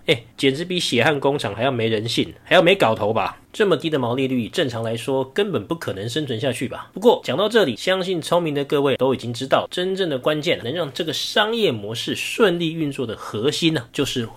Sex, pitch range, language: male, 125-180 Hz, Chinese